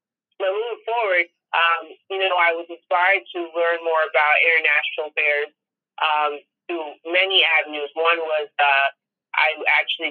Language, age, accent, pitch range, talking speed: English, 30-49, American, 145-175 Hz, 140 wpm